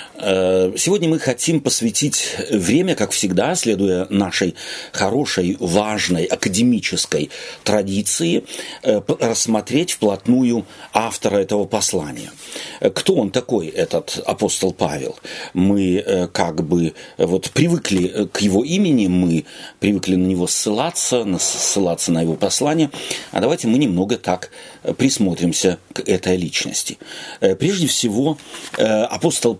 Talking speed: 105 wpm